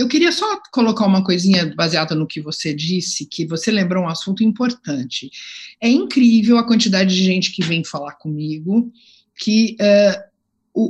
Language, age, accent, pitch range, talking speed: Portuguese, 50-69, Brazilian, 195-260 Hz, 160 wpm